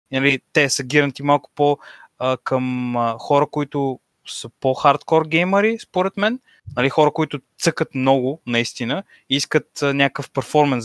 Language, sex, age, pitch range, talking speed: Bulgarian, male, 20-39, 125-160 Hz, 150 wpm